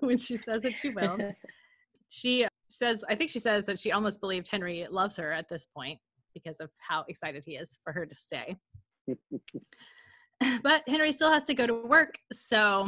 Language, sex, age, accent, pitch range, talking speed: English, female, 20-39, American, 195-265 Hz, 190 wpm